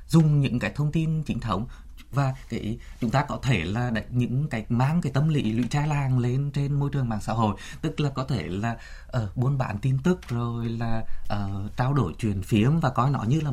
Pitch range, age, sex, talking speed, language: 110-145 Hz, 20-39, male, 235 wpm, Vietnamese